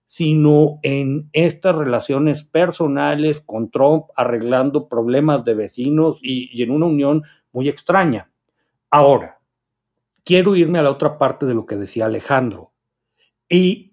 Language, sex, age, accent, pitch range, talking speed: Spanish, male, 50-69, Mexican, 120-155 Hz, 135 wpm